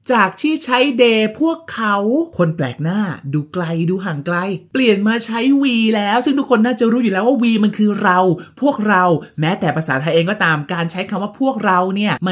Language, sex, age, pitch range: Thai, male, 20-39, 160-225 Hz